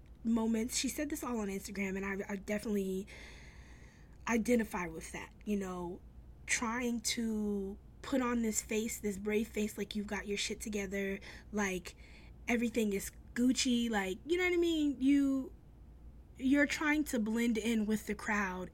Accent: American